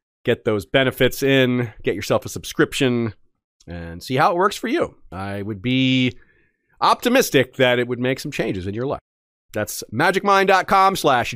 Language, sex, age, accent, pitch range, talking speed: English, male, 30-49, American, 120-165 Hz, 165 wpm